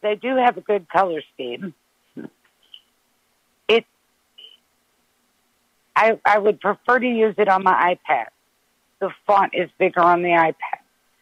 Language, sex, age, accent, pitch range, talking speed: English, female, 50-69, American, 165-205 Hz, 135 wpm